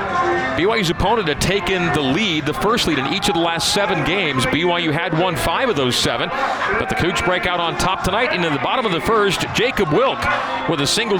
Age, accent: 40-59, American